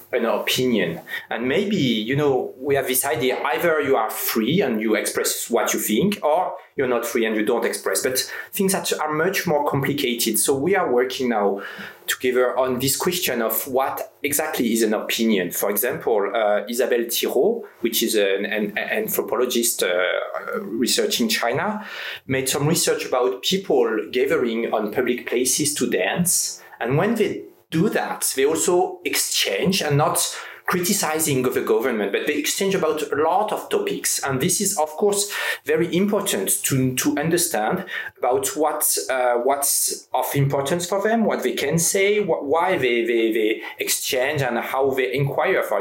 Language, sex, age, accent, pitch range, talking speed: French, male, 30-49, French, 125-205 Hz, 170 wpm